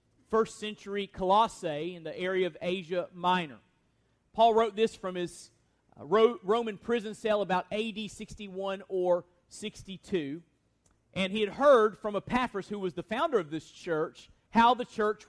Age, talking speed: 40-59, 150 wpm